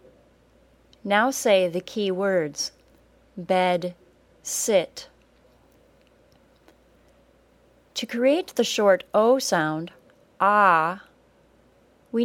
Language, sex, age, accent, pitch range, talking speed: English, female, 30-49, American, 180-220 Hz, 75 wpm